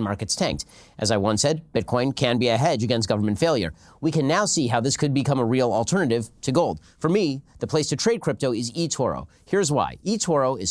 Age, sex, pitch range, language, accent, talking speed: 40-59, male, 115-160 Hz, English, American, 225 wpm